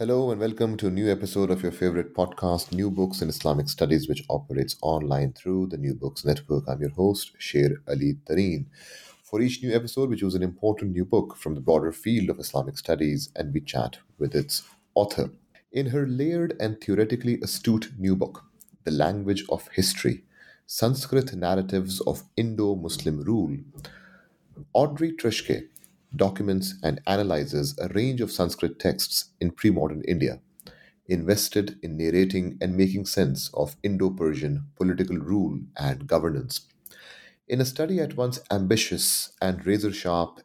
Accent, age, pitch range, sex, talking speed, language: Indian, 30-49, 80-110 Hz, male, 155 wpm, English